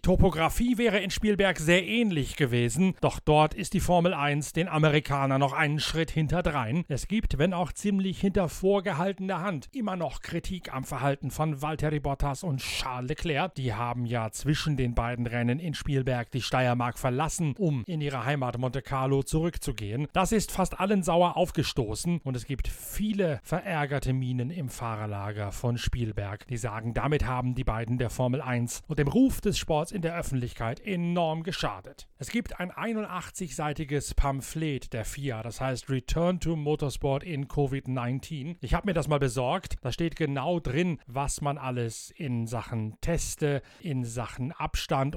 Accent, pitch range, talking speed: German, 125-165 Hz, 165 wpm